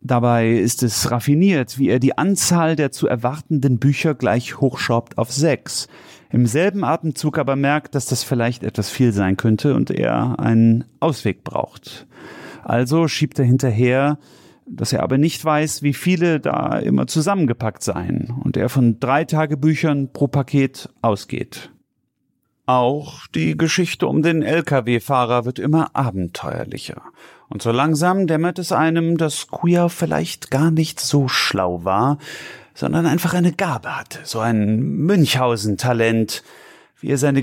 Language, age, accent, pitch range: German, 40-59, German, 120-155 Hz